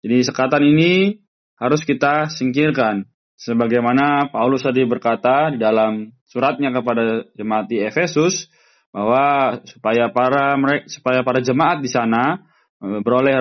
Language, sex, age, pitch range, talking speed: Indonesian, male, 20-39, 115-145 Hz, 110 wpm